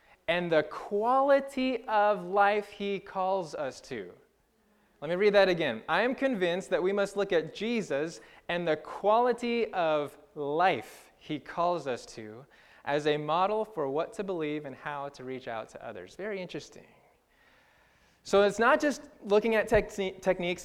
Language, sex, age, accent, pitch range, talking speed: English, male, 20-39, American, 160-210 Hz, 160 wpm